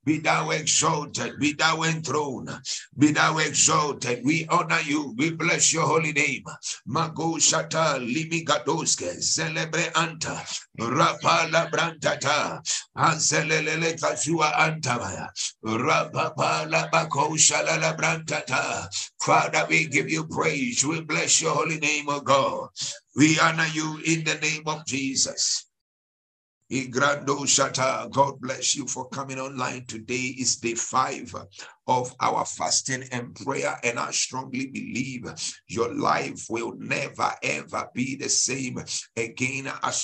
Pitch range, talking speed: 125-155 Hz, 115 wpm